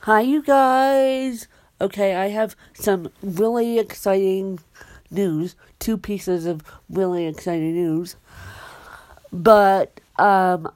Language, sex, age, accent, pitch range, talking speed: English, female, 50-69, American, 180-215 Hz, 100 wpm